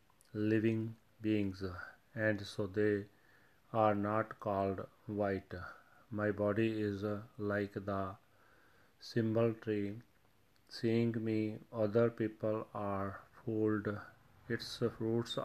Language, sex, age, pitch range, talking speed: Punjabi, male, 40-59, 100-115 Hz, 95 wpm